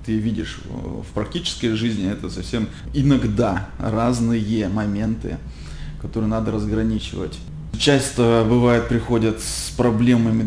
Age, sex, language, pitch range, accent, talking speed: 20-39, male, Russian, 100-115 Hz, native, 105 wpm